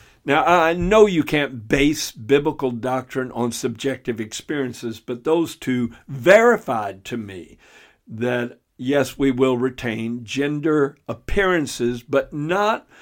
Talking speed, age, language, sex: 120 wpm, 60-79, English, male